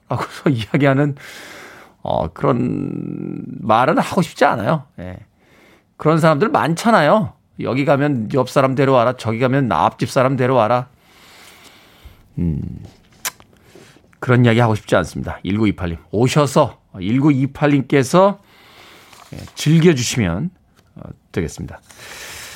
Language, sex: Korean, male